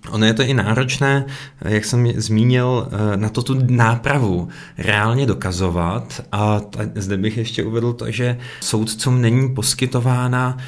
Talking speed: 140 wpm